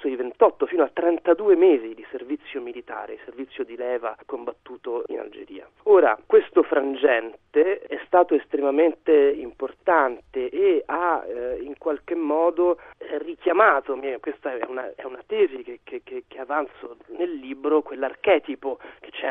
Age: 40-59